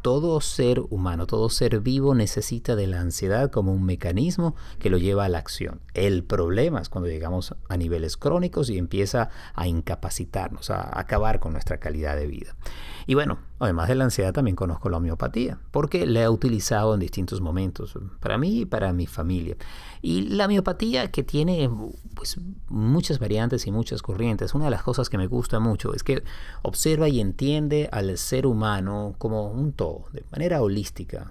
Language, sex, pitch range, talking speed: Spanish, male, 90-125 Hz, 180 wpm